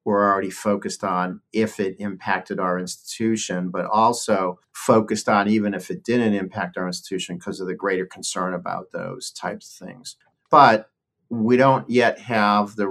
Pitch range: 90-100 Hz